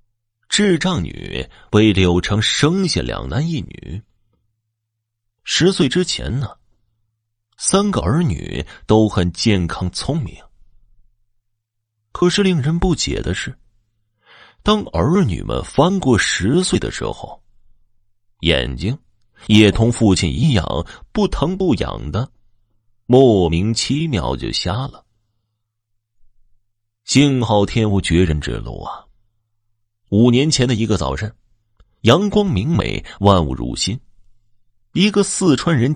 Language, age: Chinese, 30-49